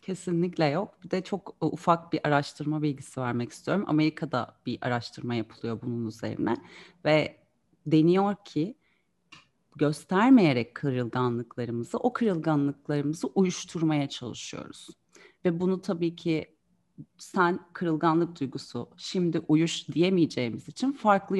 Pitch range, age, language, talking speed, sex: 140-185 Hz, 30-49, English, 105 wpm, female